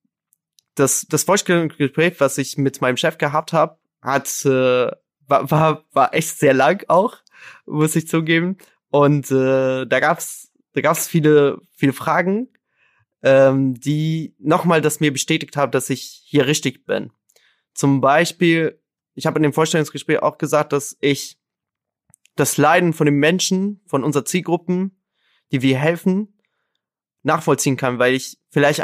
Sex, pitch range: male, 140-160 Hz